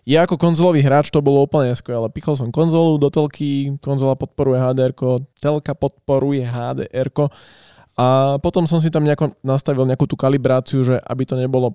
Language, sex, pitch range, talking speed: Slovak, male, 130-150 Hz, 170 wpm